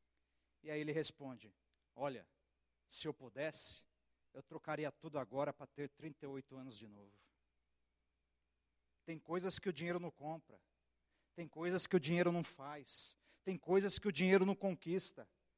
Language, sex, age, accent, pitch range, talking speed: Portuguese, male, 50-69, Brazilian, 170-285 Hz, 150 wpm